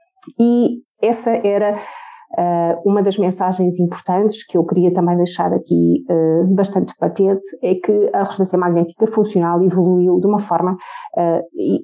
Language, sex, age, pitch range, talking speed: English, female, 30-49, 175-210 Hz, 140 wpm